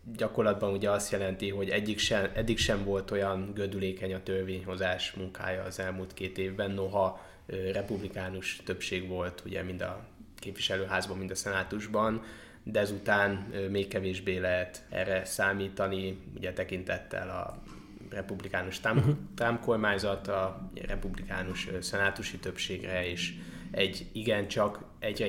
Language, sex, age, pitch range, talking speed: Hungarian, male, 20-39, 95-100 Hz, 115 wpm